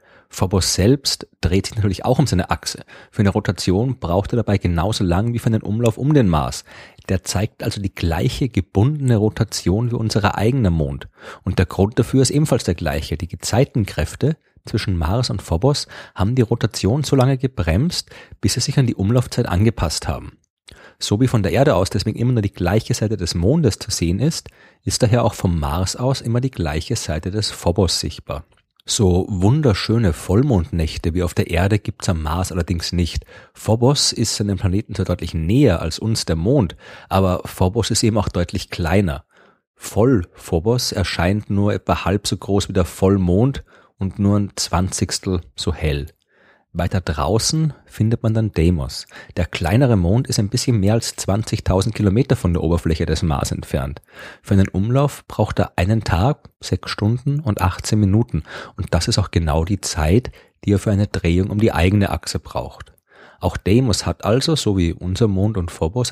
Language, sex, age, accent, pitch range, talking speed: German, male, 30-49, German, 90-115 Hz, 185 wpm